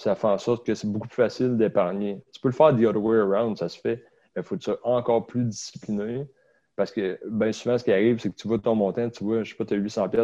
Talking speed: 270 wpm